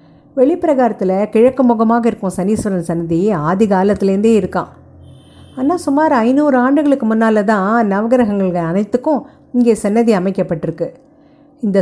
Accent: native